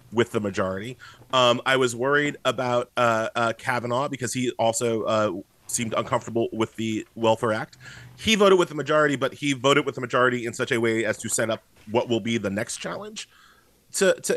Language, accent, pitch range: English, American, 120-150 Hz